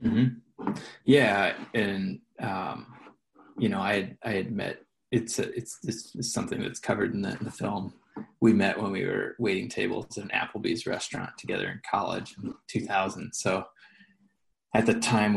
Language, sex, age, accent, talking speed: English, male, 20-39, American, 160 wpm